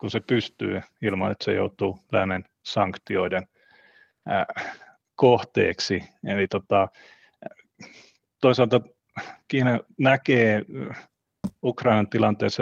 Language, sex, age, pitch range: Finnish, male, 30-49, 100-120 Hz